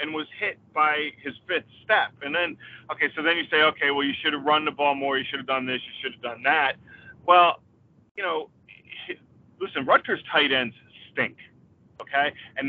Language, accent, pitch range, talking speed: English, American, 135-175 Hz, 205 wpm